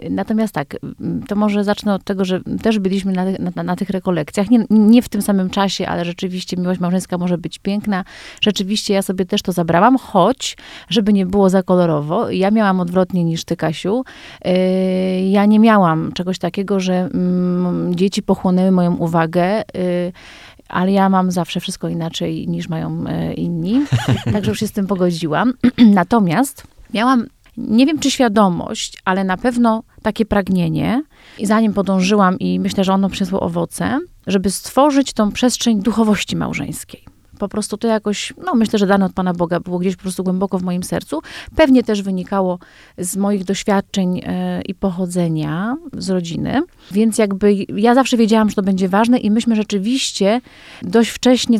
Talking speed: 165 wpm